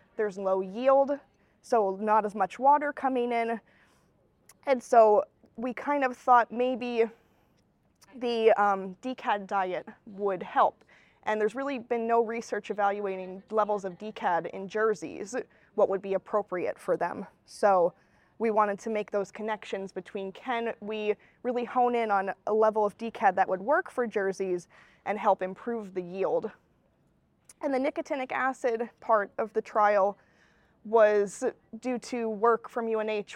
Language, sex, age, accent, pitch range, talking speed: English, female, 20-39, American, 200-250 Hz, 150 wpm